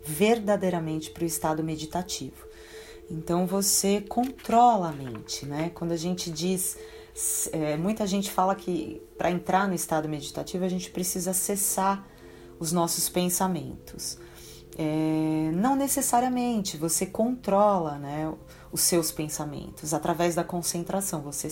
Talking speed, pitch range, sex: 120 wpm, 160-205 Hz, female